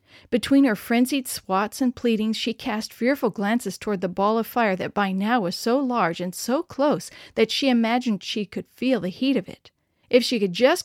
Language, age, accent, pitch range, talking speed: English, 40-59, American, 200-265 Hz, 210 wpm